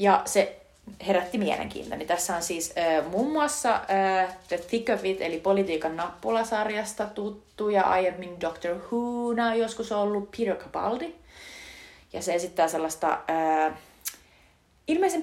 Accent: native